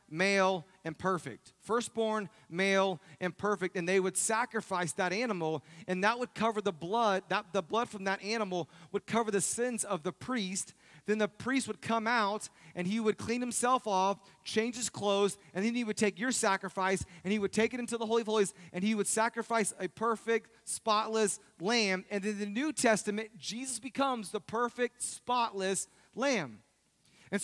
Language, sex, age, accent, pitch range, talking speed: English, male, 30-49, American, 160-220 Hz, 185 wpm